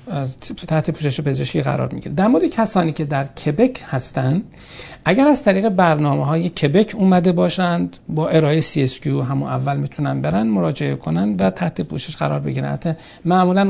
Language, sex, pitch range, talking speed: Persian, male, 130-175 Hz, 160 wpm